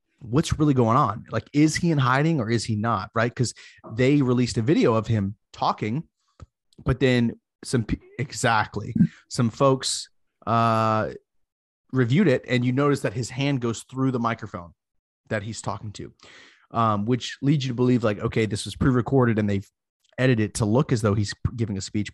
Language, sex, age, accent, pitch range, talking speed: English, male, 30-49, American, 105-130 Hz, 185 wpm